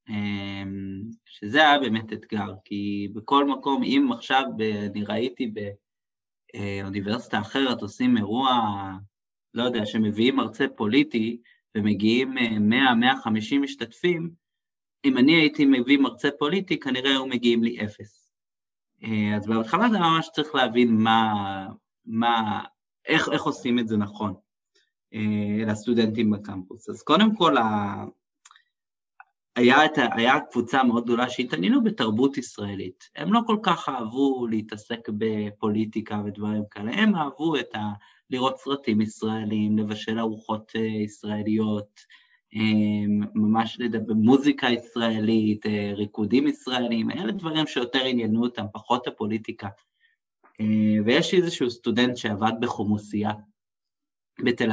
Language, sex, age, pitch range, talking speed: Hebrew, male, 20-39, 105-135 Hz, 110 wpm